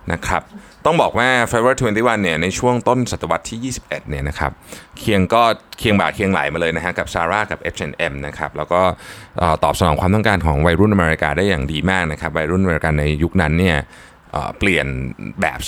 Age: 20-39